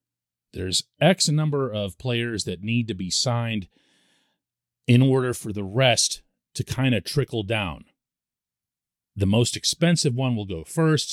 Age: 40-59